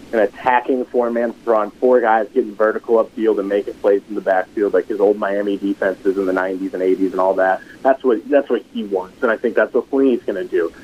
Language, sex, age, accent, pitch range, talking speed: English, male, 30-49, American, 115-165 Hz, 240 wpm